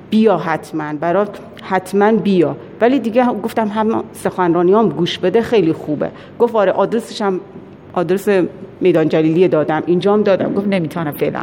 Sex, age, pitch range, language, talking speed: female, 40-59, 175-230 Hz, Persian, 140 wpm